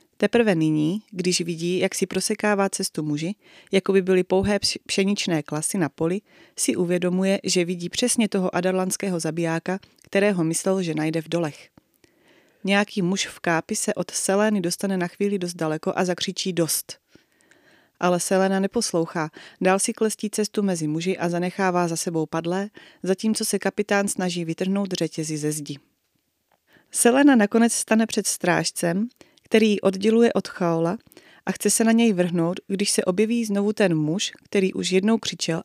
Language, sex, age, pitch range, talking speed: Czech, female, 30-49, 170-205 Hz, 155 wpm